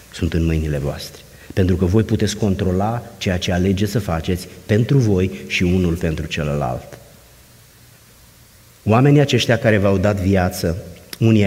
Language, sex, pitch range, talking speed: Romanian, male, 85-110 Hz, 140 wpm